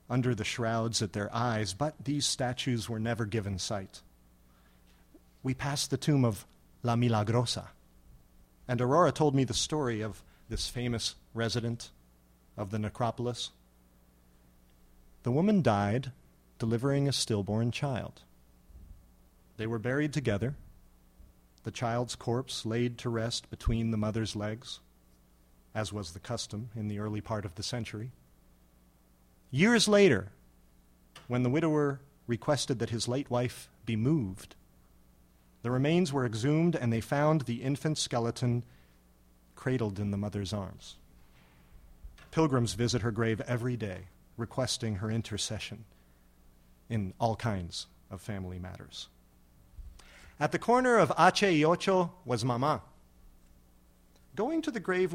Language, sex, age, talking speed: English, male, 40-59, 130 wpm